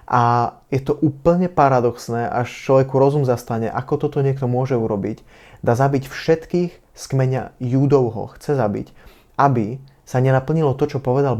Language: Slovak